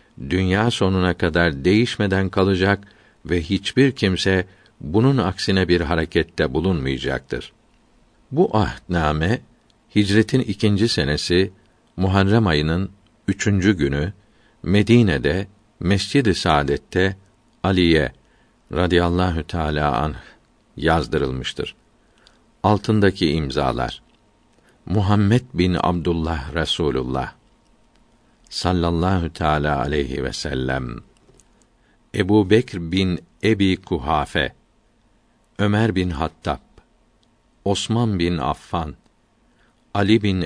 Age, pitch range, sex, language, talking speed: 50-69, 80-105 Hz, male, Turkish, 80 wpm